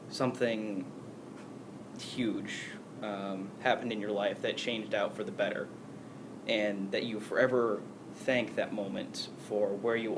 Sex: male